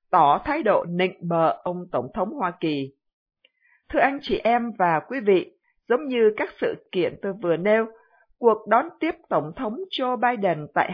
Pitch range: 180-250 Hz